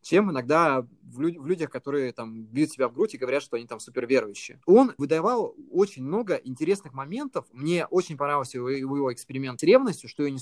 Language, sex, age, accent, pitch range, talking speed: Russian, male, 20-39, native, 125-160 Hz, 185 wpm